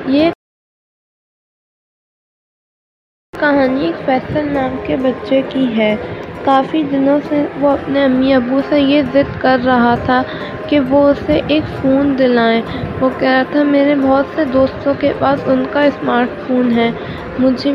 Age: 20-39